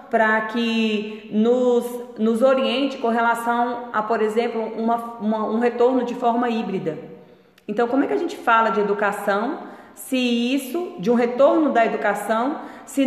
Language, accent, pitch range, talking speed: Portuguese, Brazilian, 190-245 Hz, 155 wpm